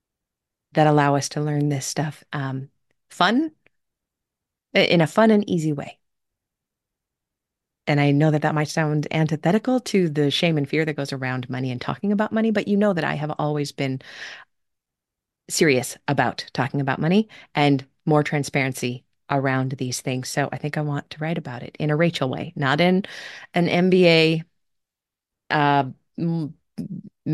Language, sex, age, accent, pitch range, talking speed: English, female, 30-49, American, 135-170 Hz, 160 wpm